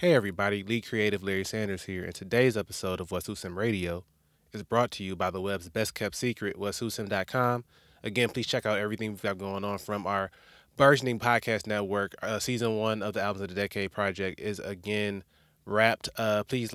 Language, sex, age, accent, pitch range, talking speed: English, male, 20-39, American, 95-110 Hz, 195 wpm